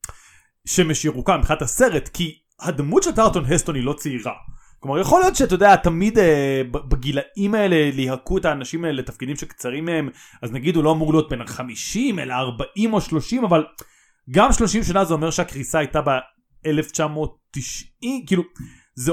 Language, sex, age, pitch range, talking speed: Hebrew, male, 30-49, 145-205 Hz, 160 wpm